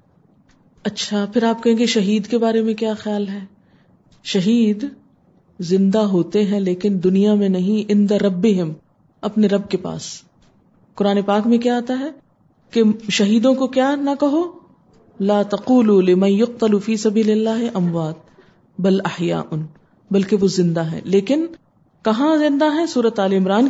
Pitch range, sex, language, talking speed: 195-265 Hz, female, Urdu, 145 wpm